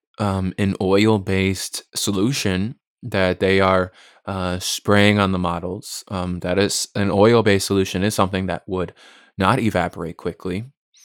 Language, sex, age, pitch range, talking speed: English, male, 20-39, 95-110 Hz, 135 wpm